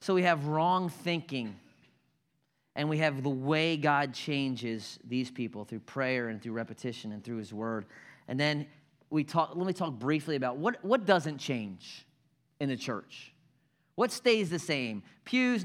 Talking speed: 170 wpm